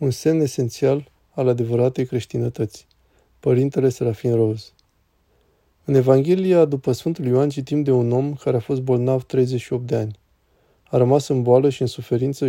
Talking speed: 155 wpm